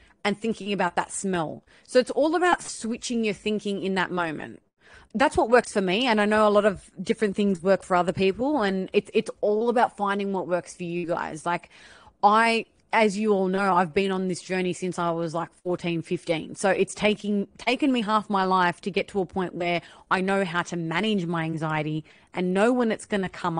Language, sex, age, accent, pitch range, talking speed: English, female, 30-49, Australian, 175-215 Hz, 220 wpm